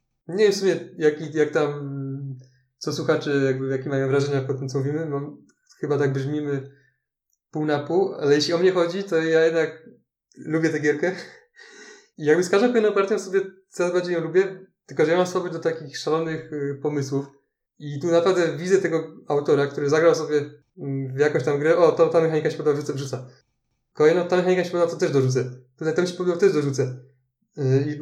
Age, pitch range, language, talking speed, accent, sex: 20-39, 140-175 Hz, Polish, 200 wpm, native, male